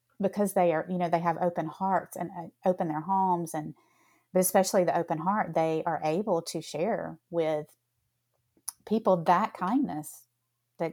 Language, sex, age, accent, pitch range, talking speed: English, female, 30-49, American, 145-175 Hz, 160 wpm